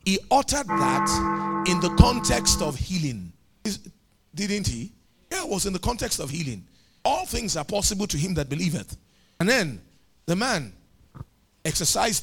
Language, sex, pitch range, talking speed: English, male, 140-195 Hz, 150 wpm